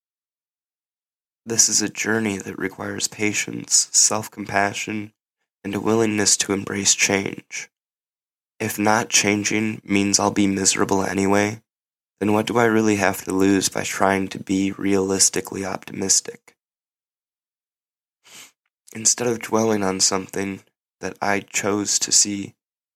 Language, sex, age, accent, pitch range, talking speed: English, male, 20-39, American, 95-105 Hz, 125 wpm